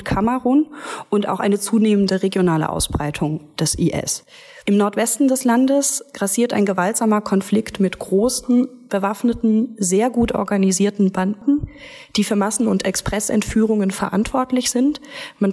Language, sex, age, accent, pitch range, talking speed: German, female, 30-49, German, 195-235 Hz, 130 wpm